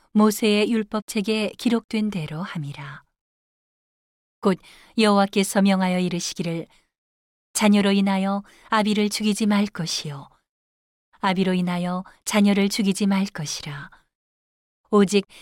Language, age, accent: Korean, 40-59, native